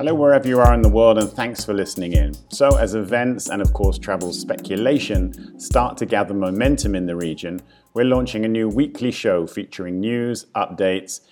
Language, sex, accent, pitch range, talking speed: English, male, British, 95-120 Hz, 190 wpm